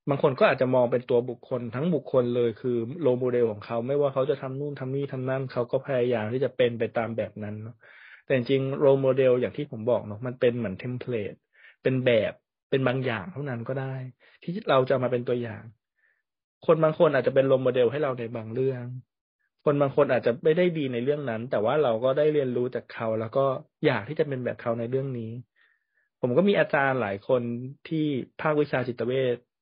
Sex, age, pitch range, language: male, 20-39, 120-140 Hz, Thai